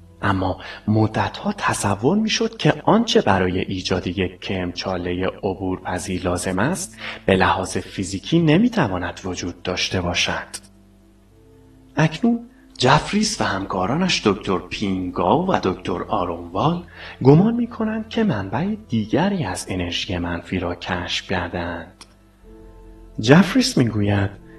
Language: Persian